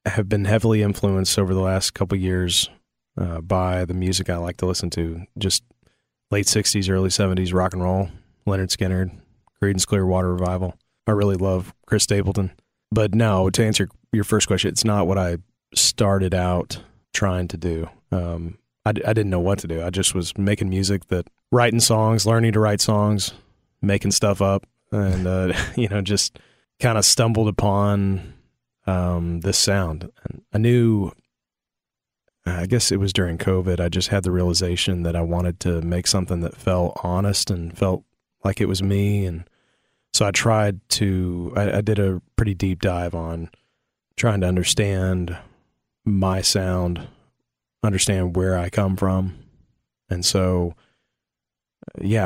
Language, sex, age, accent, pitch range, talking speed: English, male, 30-49, American, 90-105 Hz, 165 wpm